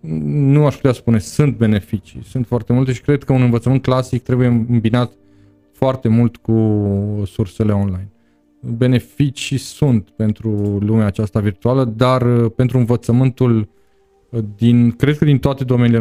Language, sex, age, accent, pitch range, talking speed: Romanian, male, 20-39, native, 110-130 Hz, 140 wpm